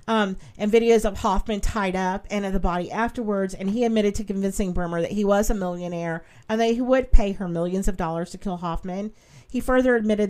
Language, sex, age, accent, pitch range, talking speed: English, female, 40-59, American, 175-225 Hz, 220 wpm